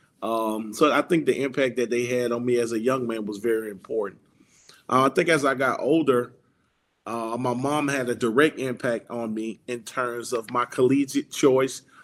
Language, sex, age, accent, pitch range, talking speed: English, male, 30-49, American, 120-140 Hz, 200 wpm